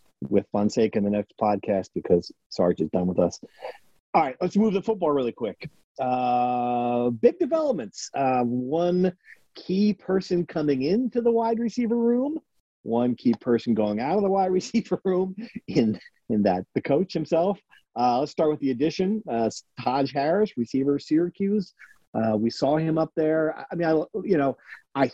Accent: American